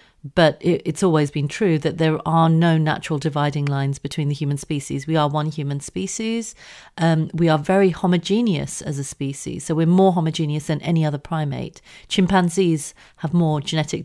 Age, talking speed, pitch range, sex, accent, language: 40-59, 175 wpm, 155-190 Hz, female, British, English